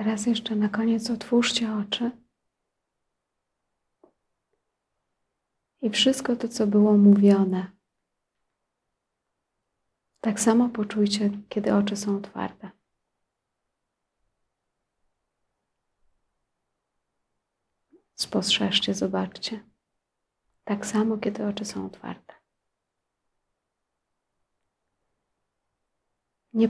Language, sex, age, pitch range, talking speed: Polish, female, 30-49, 195-215 Hz, 65 wpm